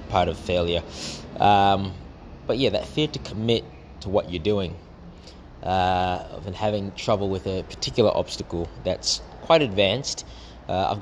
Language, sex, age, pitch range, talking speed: English, male, 20-39, 85-100 Hz, 150 wpm